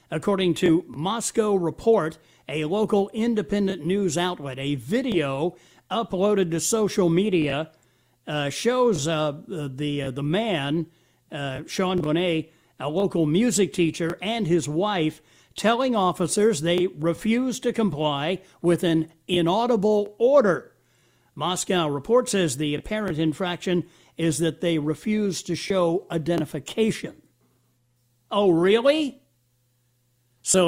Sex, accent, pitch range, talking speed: male, American, 150-215 Hz, 115 wpm